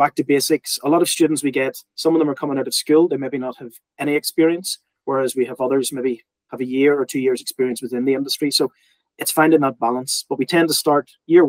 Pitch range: 125-150 Hz